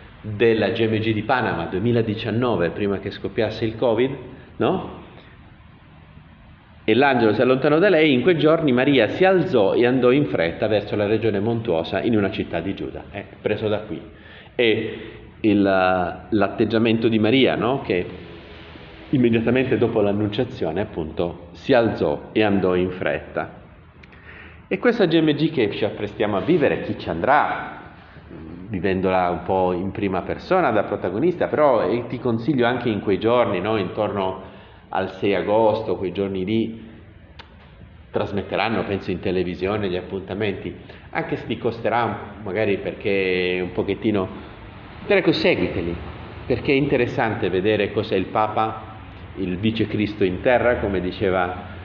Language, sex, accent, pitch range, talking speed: Italian, male, native, 90-120 Hz, 140 wpm